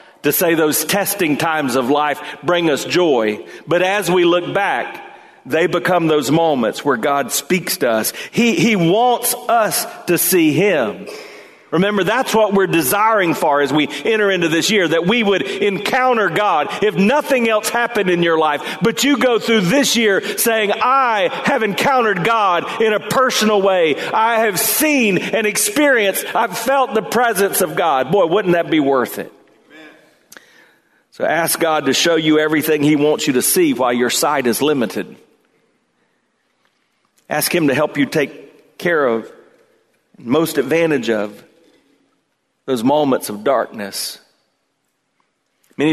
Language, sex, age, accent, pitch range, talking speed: English, male, 40-59, American, 145-220 Hz, 155 wpm